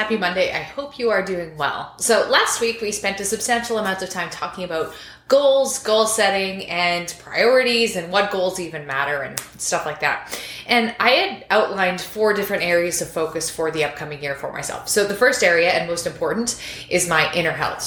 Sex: female